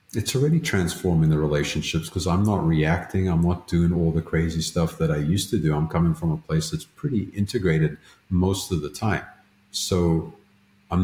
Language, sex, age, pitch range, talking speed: English, male, 50-69, 80-100 Hz, 190 wpm